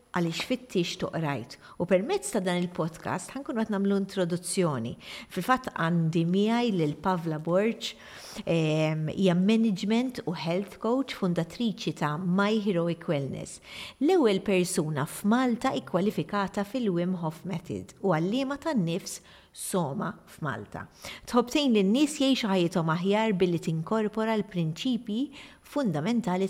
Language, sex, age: English, female, 50-69